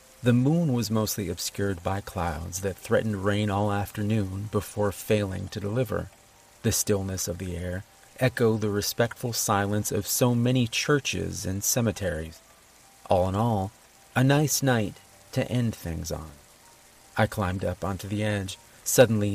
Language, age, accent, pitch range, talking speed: English, 30-49, American, 95-115 Hz, 150 wpm